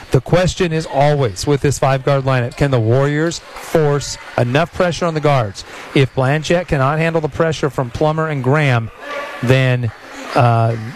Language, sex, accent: English, male, American